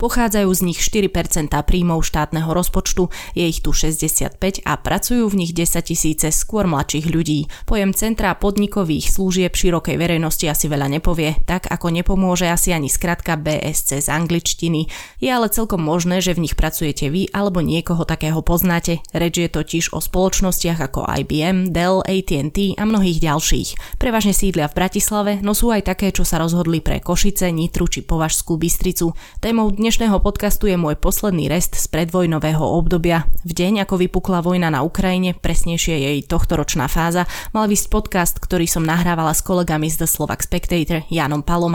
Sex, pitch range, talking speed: female, 160-190 Hz, 165 wpm